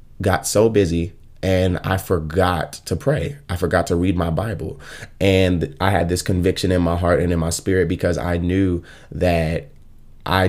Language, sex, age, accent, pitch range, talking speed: English, male, 20-39, American, 85-95 Hz, 175 wpm